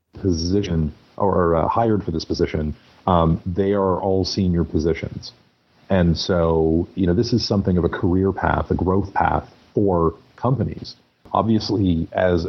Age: 40-59